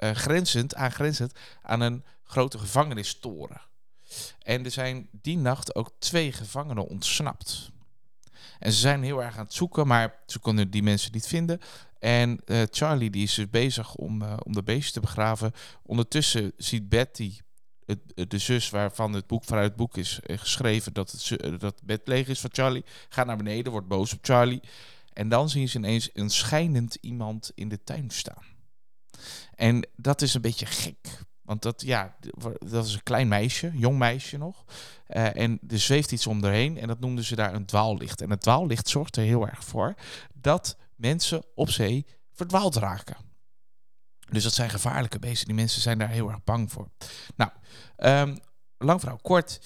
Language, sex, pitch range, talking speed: Dutch, male, 105-130 Hz, 180 wpm